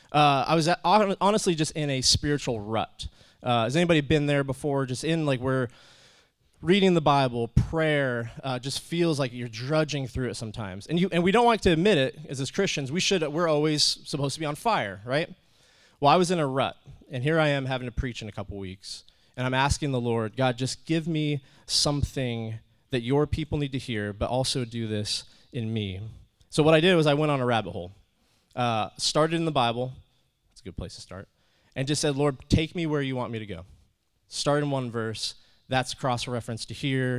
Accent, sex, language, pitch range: American, male, English, 115-150 Hz